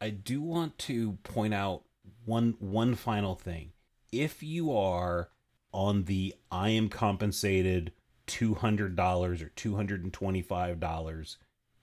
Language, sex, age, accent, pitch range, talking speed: English, male, 30-49, American, 90-105 Hz, 105 wpm